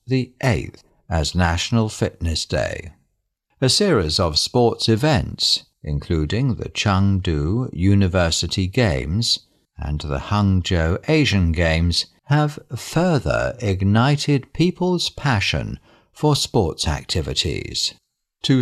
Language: English